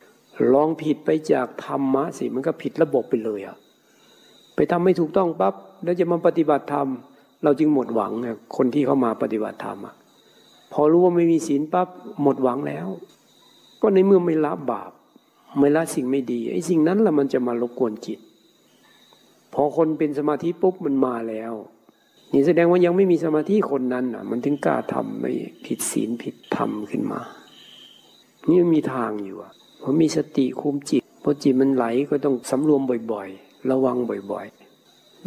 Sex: male